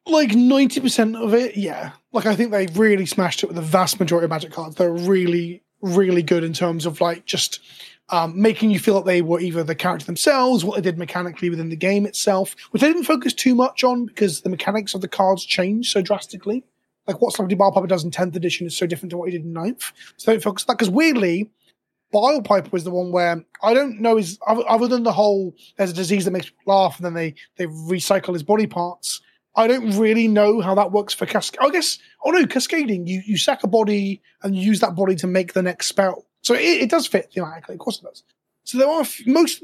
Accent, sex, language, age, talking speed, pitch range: British, male, English, 20-39, 245 wpm, 180-230 Hz